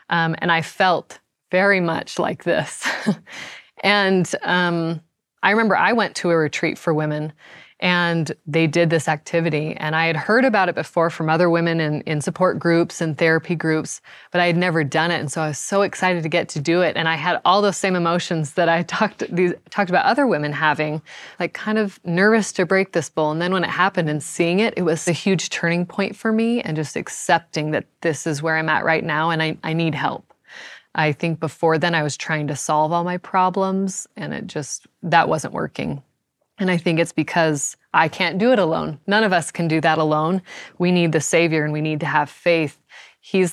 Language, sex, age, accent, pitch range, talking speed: English, female, 20-39, American, 155-180 Hz, 220 wpm